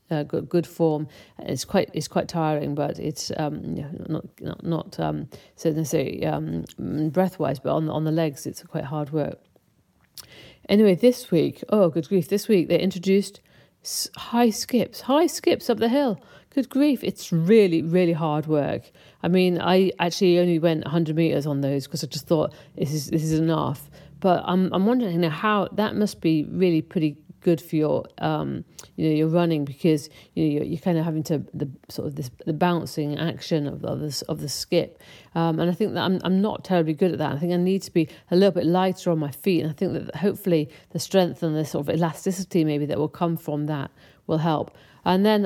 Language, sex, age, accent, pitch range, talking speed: English, female, 40-59, British, 155-185 Hz, 215 wpm